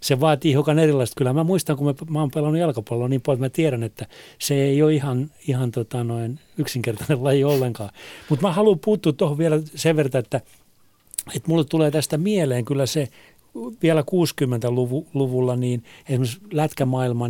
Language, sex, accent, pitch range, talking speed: Finnish, male, native, 120-150 Hz, 175 wpm